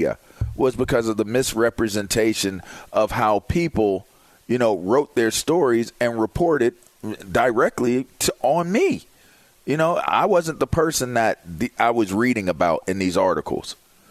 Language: English